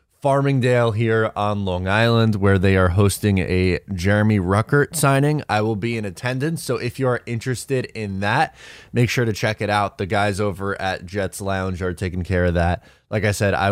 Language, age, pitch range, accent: English, 20-39, 95-130 Hz, American